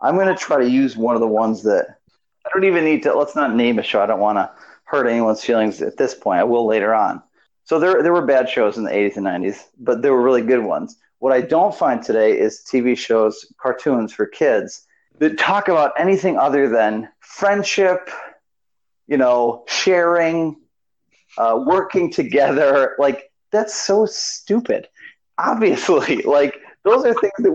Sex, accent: male, American